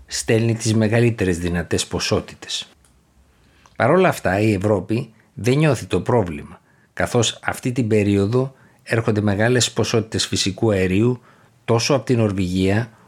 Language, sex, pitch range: Greek, male, 90-115 Hz